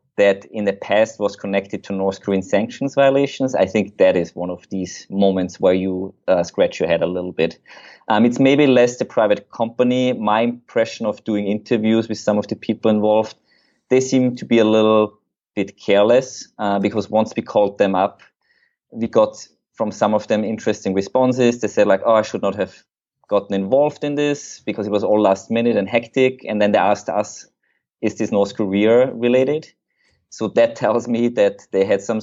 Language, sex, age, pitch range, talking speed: English, male, 20-39, 100-115 Hz, 200 wpm